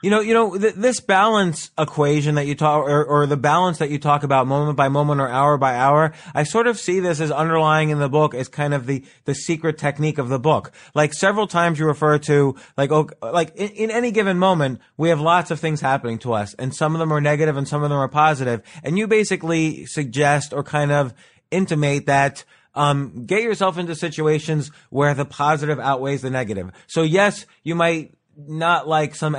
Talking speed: 220 wpm